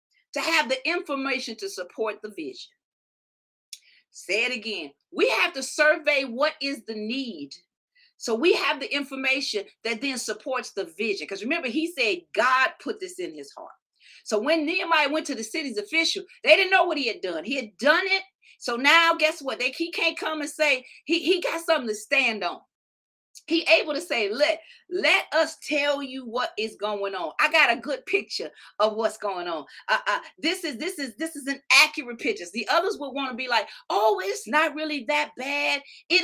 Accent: American